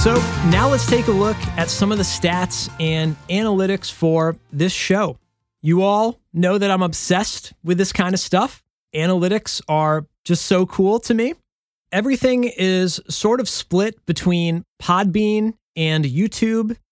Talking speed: 155 wpm